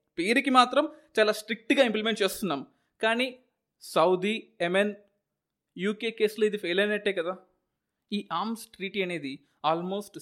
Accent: native